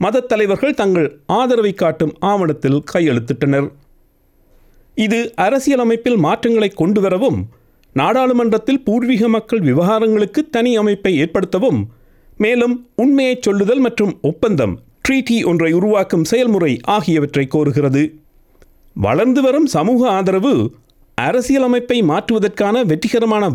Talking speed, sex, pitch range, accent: 85 wpm, male, 180-235 Hz, native